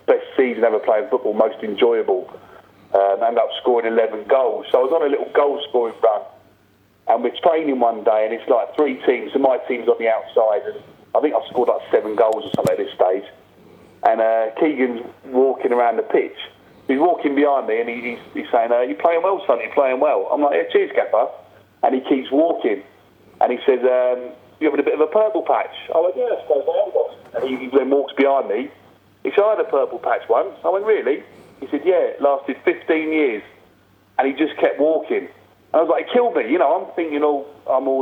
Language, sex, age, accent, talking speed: English, male, 40-59, British, 230 wpm